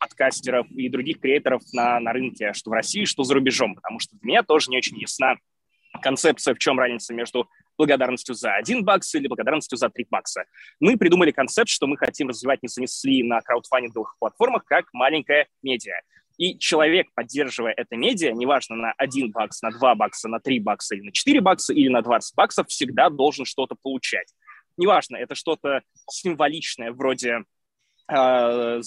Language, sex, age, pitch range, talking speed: Russian, male, 20-39, 125-180 Hz, 175 wpm